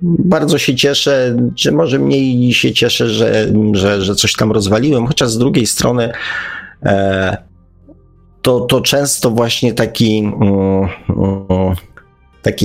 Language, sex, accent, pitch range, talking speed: Polish, male, native, 95-115 Hz, 115 wpm